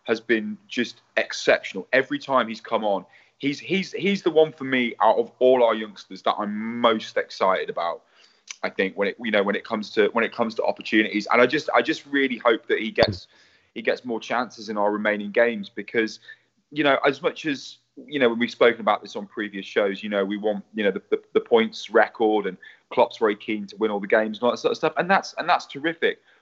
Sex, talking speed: male, 240 wpm